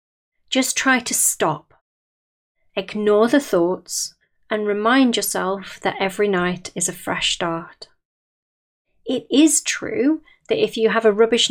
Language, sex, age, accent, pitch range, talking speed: English, female, 30-49, British, 185-230 Hz, 135 wpm